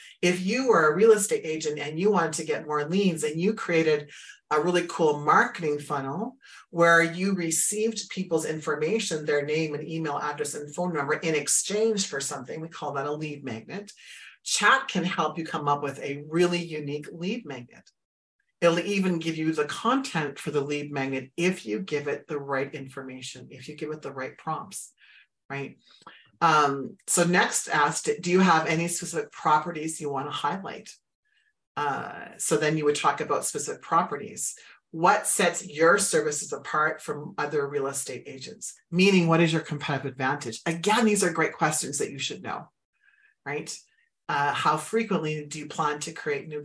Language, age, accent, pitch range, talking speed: English, 40-59, American, 150-195 Hz, 180 wpm